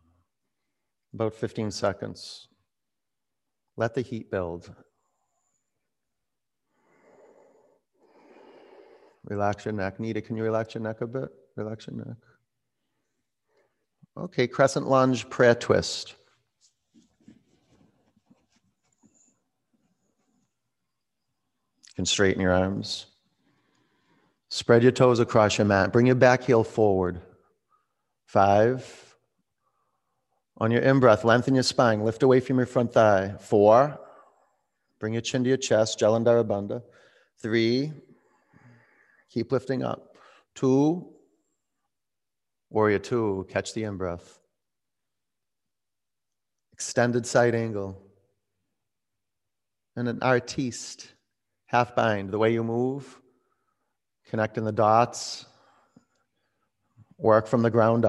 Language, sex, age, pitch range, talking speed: English, male, 50-69, 105-125 Hz, 95 wpm